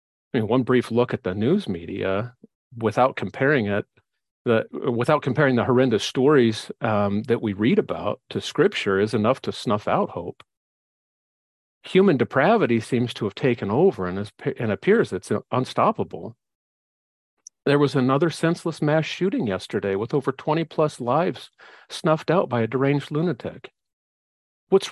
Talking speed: 150 wpm